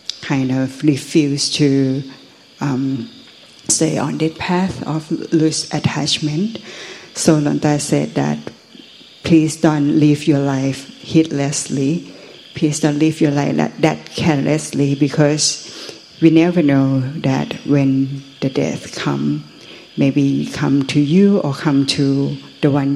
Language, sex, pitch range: Thai, female, 140-155 Hz